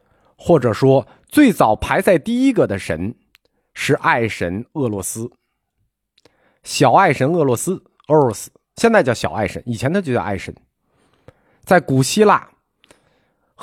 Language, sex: Chinese, male